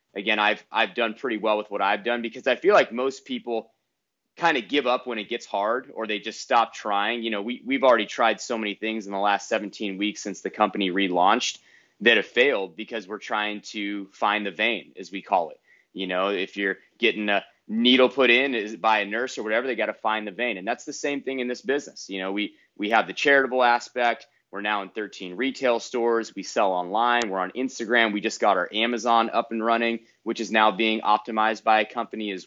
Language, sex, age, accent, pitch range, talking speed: English, male, 30-49, American, 105-120 Hz, 235 wpm